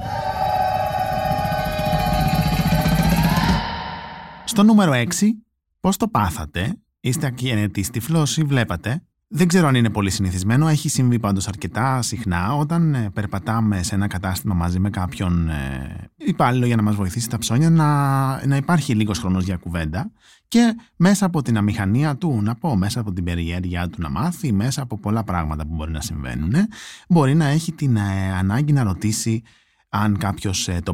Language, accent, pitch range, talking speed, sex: Greek, native, 100-155 Hz, 155 wpm, male